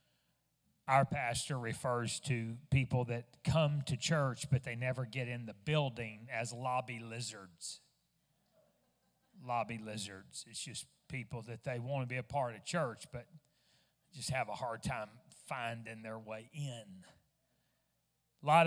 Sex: male